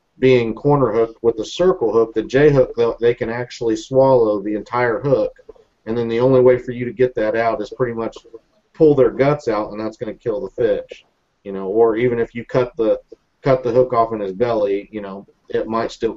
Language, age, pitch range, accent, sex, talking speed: English, 40-59, 110-130 Hz, American, male, 230 wpm